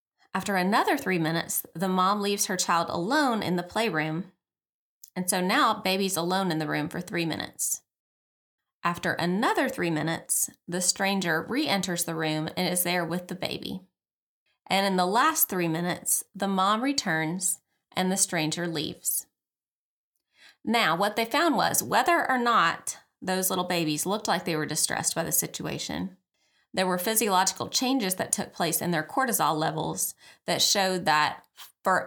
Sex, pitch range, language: female, 170-215 Hz, English